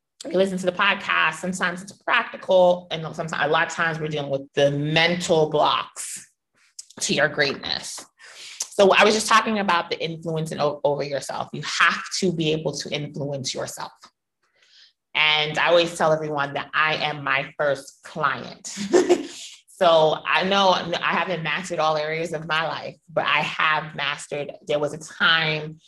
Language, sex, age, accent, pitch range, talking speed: English, female, 30-49, American, 145-180 Hz, 165 wpm